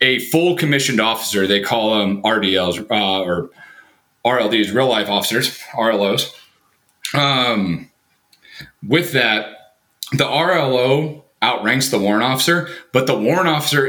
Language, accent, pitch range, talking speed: English, American, 105-140 Hz, 120 wpm